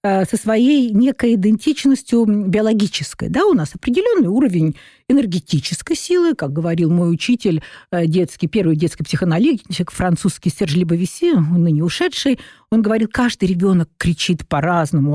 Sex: female